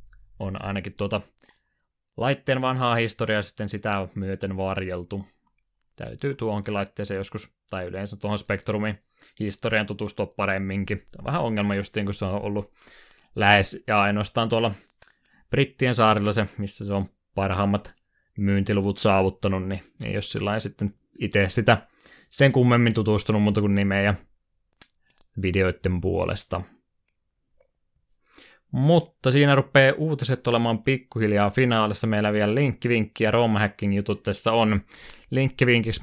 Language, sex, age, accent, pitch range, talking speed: Finnish, male, 20-39, native, 100-115 Hz, 120 wpm